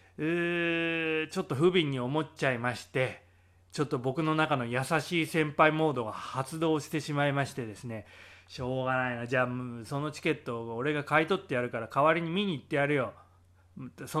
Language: Japanese